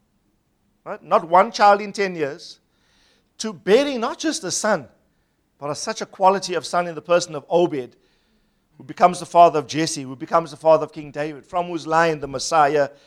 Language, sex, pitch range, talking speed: English, male, 110-165 Hz, 190 wpm